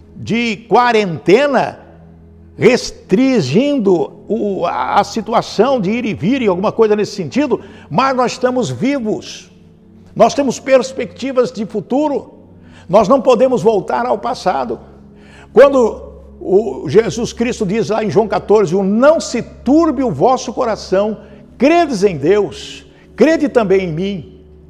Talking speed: 130 wpm